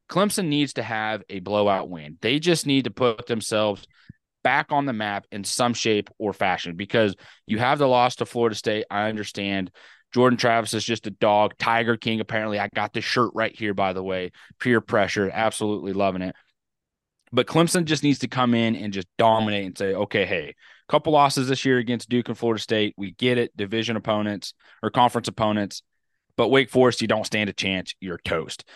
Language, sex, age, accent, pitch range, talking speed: English, male, 20-39, American, 100-120 Hz, 200 wpm